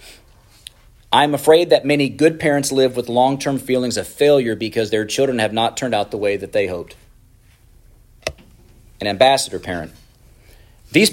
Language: English